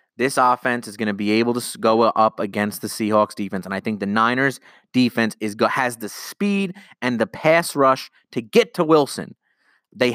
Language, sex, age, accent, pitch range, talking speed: English, male, 30-49, American, 110-140 Hz, 200 wpm